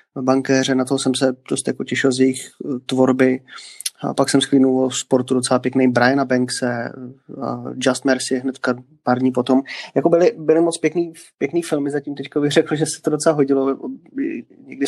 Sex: male